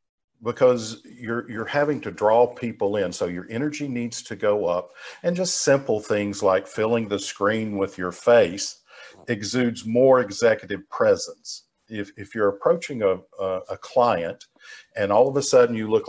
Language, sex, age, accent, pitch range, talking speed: English, male, 50-69, American, 100-135 Hz, 170 wpm